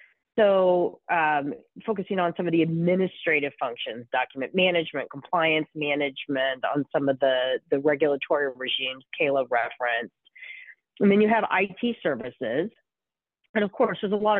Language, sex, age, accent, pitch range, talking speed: English, female, 40-59, American, 150-185 Hz, 140 wpm